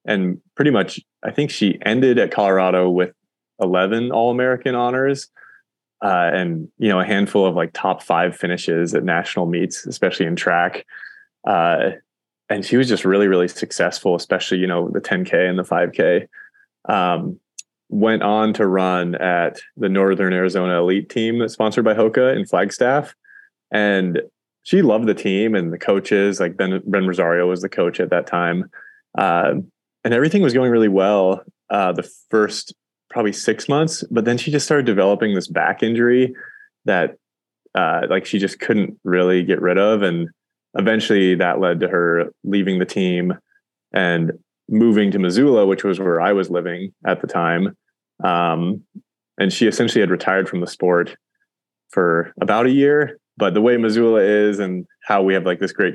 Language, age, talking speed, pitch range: English, 20-39, 170 wpm, 90-115 Hz